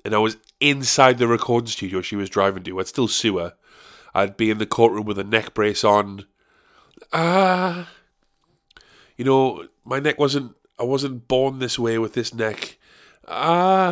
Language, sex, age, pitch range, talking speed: English, male, 20-39, 105-155 Hz, 175 wpm